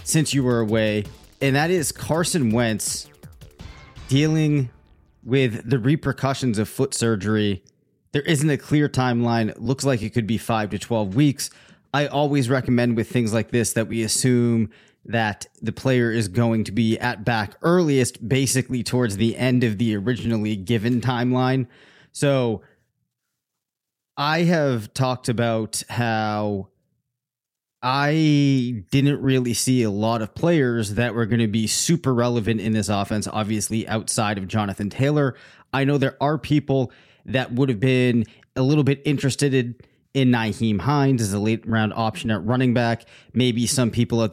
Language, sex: English, male